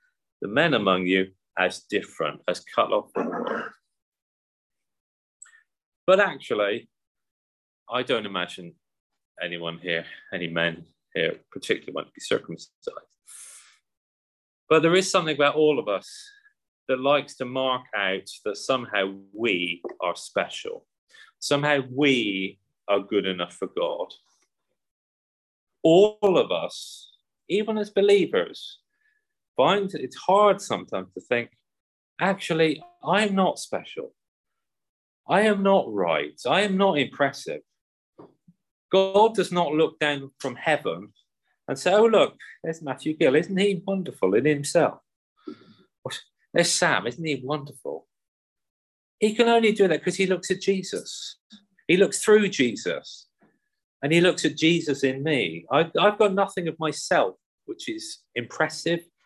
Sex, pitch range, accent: male, 130-205 Hz, British